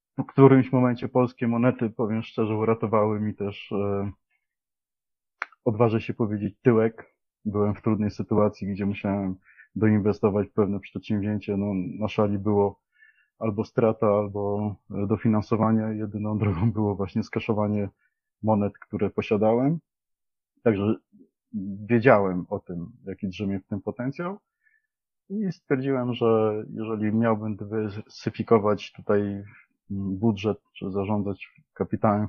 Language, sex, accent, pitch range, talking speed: Polish, male, native, 100-115 Hz, 110 wpm